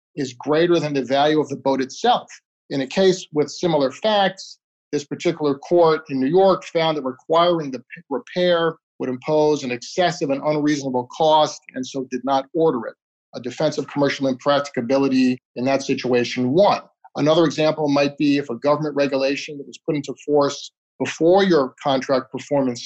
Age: 40-59